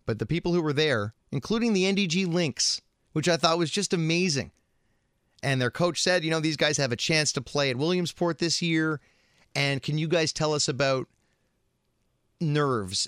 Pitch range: 125-180 Hz